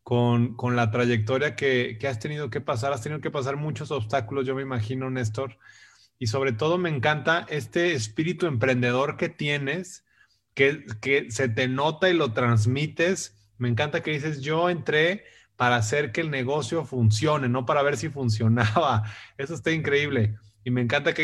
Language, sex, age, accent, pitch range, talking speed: Spanish, male, 20-39, Mexican, 120-155 Hz, 175 wpm